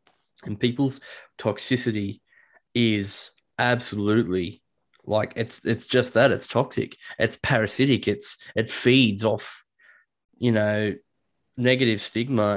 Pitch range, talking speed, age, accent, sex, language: 110-145 Hz, 105 wpm, 20-39, Australian, male, English